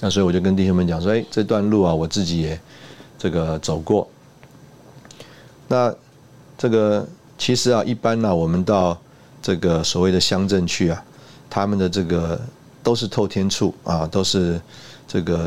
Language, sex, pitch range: Chinese, male, 85-105 Hz